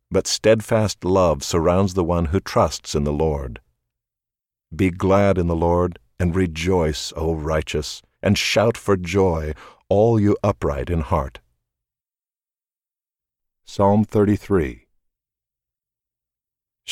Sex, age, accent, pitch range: male, 50-69, American, 80-100 Hz